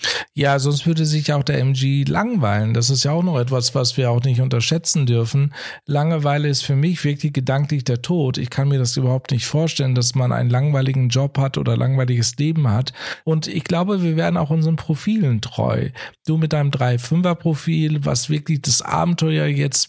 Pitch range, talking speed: 140-165 Hz, 195 wpm